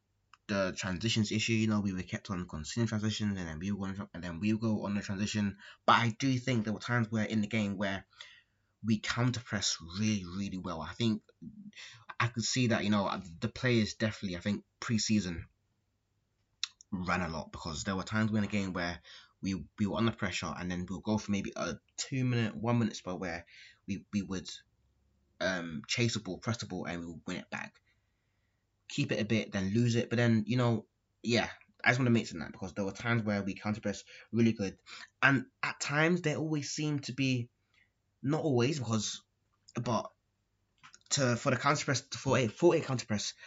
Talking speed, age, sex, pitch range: 205 wpm, 20-39, male, 100-115 Hz